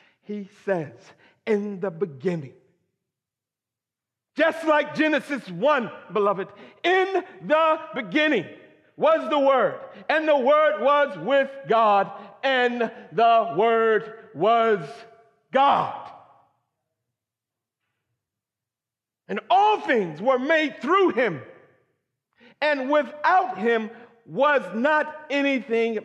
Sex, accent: male, American